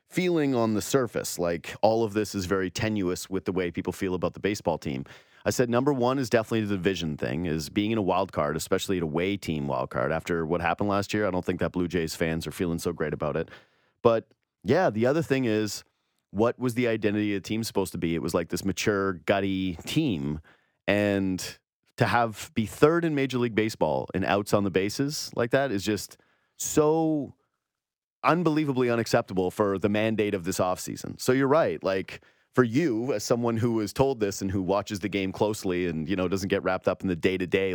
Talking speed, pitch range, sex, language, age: 225 wpm, 90-115 Hz, male, English, 30-49